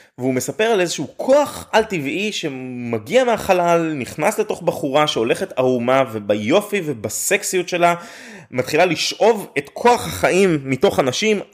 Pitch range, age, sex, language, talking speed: 125-185 Hz, 20-39, male, Hebrew, 120 wpm